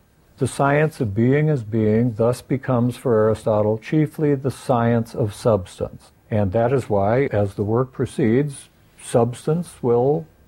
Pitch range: 110-140 Hz